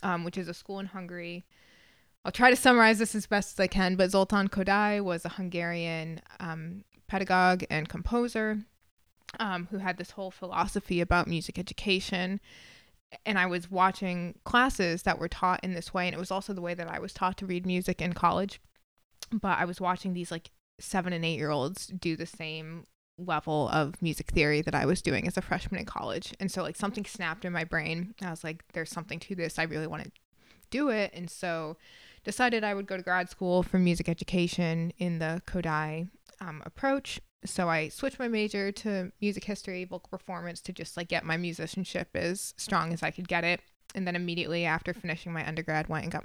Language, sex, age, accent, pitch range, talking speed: English, female, 20-39, American, 170-195 Hz, 205 wpm